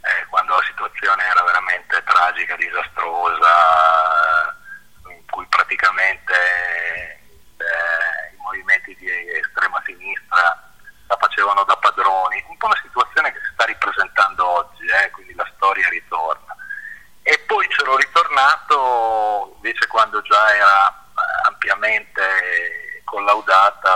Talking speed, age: 115 wpm, 40-59